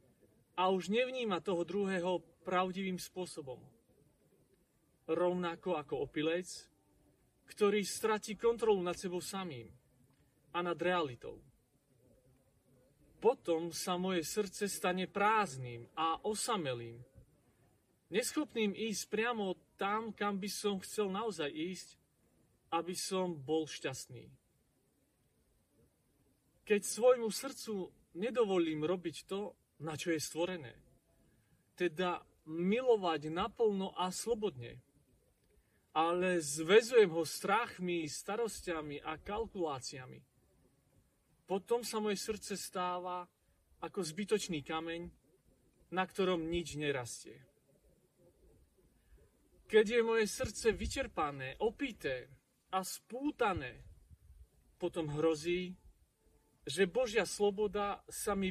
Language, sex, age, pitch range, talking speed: Slovak, male, 40-59, 155-205 Hz, 90 wpm